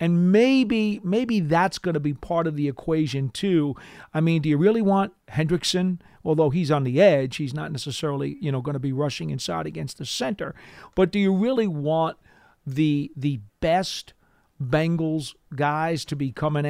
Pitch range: 145-180 Hz